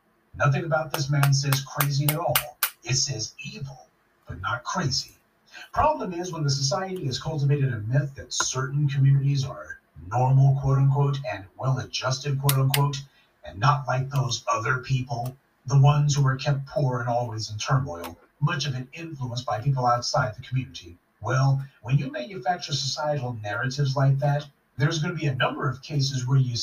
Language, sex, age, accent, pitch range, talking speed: English, male, 40-59, American, 125-145 Hz, 165 wpm